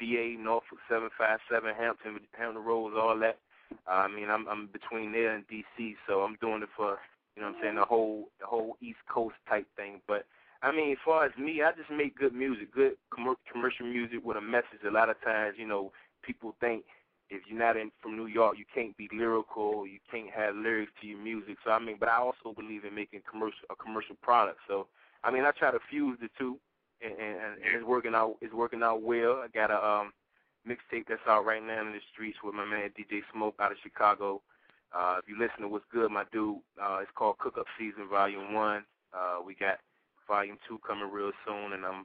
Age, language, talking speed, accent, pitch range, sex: 20-39, English, 230 wpm, American, 100-115 Hz, male